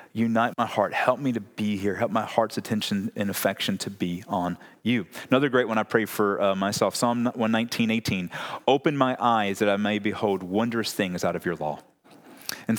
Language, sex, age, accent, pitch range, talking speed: English, male, 30-49, American, 110-140 Hz, 200 wpm